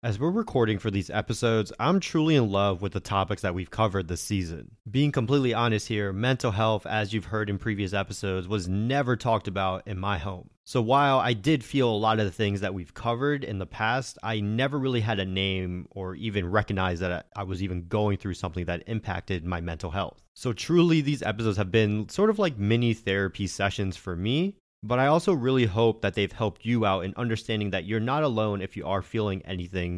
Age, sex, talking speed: 30-49, male, 220 wpm